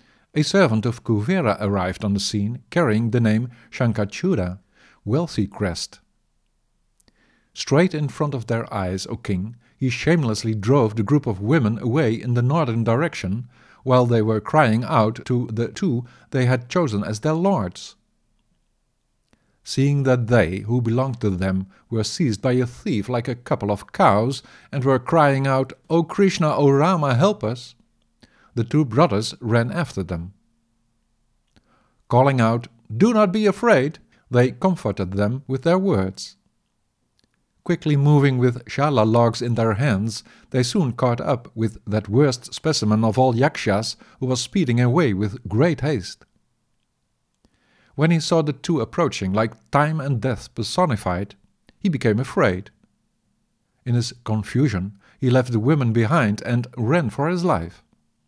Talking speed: 150 wpm